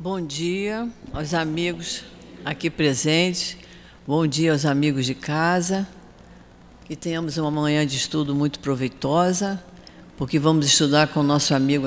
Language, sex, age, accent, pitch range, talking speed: Portuguese, female, 60-79, Brazilian, 140-170 Hz, 135 wpm